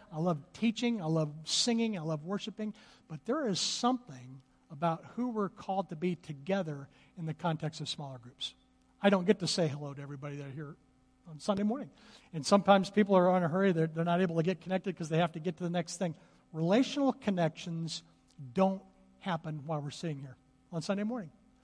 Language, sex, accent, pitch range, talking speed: English, male, American, 160-210 Hz, 205 wpm